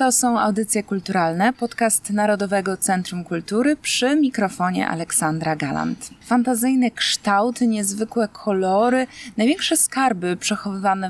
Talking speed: 105 wpm